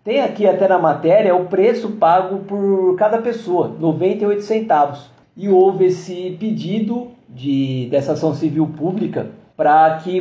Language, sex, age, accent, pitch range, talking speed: Portuguese, male, 50-69, Brazilian, 165-210 Hz, 140 wpm